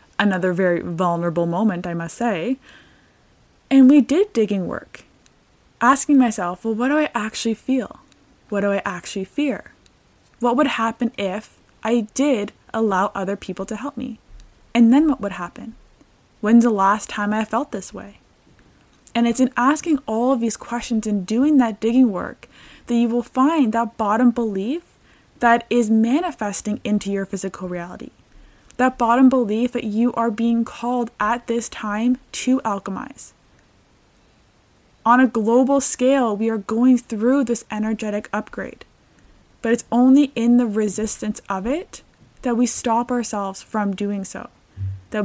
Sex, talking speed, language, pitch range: female, 155 wpm, English, 205-245 Hz